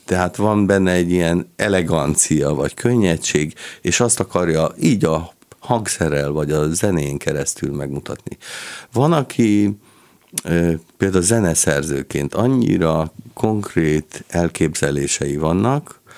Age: 50-69